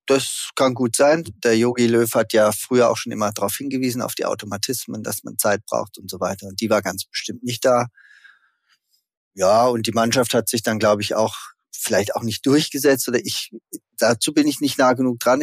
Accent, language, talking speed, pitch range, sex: German, German, 215 wpm, 110-140 Hz, male